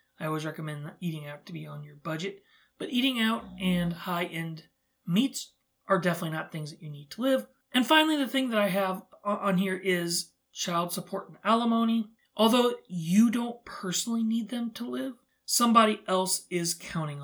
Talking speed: 180 wpm